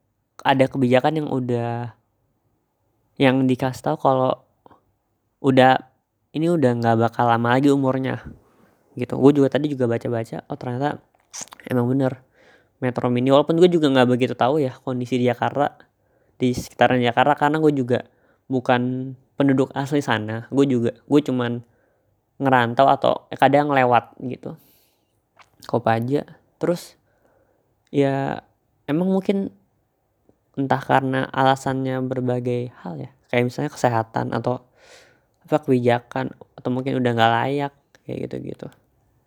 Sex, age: female, 20-39